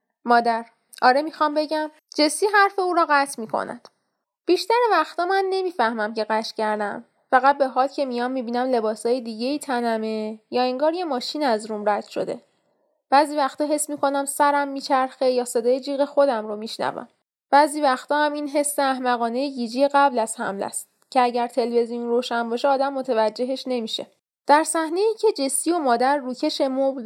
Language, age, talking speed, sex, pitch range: Persian, 10-29, 165 wpm, female, 235-305 Hz